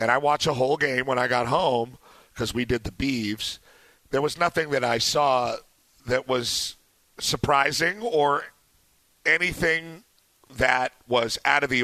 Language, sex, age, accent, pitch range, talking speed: English, male, 50-69, American, 105-135 Hz, 155 wpm